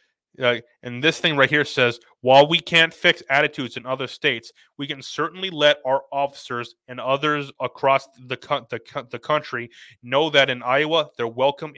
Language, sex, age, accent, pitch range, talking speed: English, male, 30-49, American, 125-150 Hz, 185 wpm